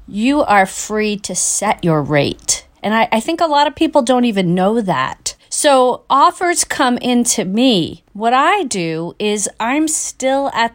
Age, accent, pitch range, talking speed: 40-59, American, 185-250 Hz, 175 wpm